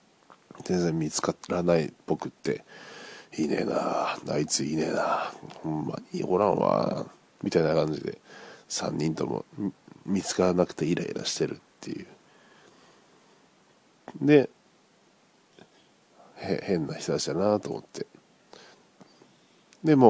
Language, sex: Japanese, male